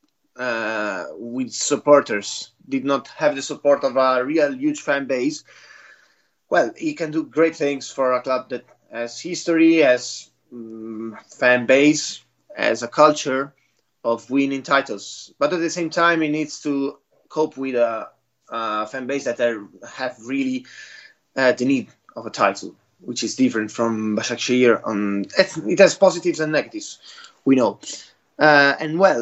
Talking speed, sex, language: 150 wpm, male, English